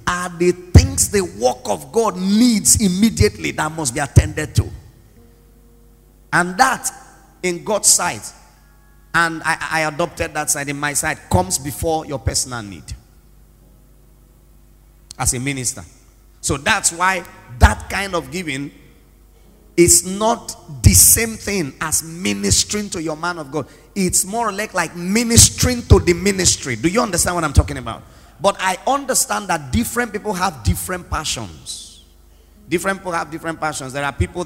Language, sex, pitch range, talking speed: English, male, 125-180 Hz, 150 wpm